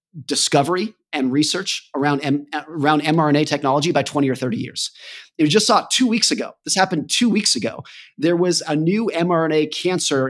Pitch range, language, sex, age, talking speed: 135-180 Hz, English, male, 30-49, 180 wpm